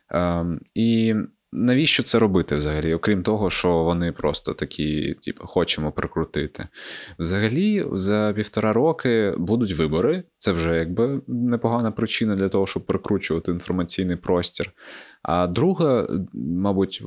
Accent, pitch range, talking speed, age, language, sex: native, 90-110 Hz, 125 wpm, 20-39, Ukrainian, male